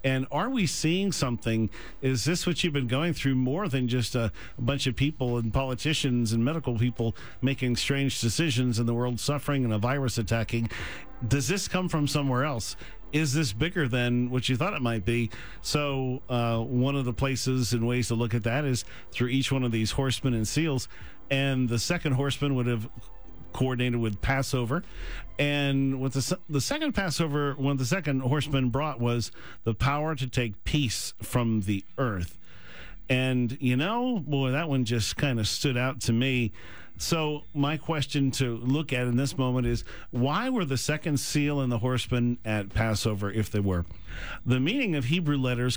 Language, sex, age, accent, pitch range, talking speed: English, male, 50-69, American, 115-140 Hz, 190 wpm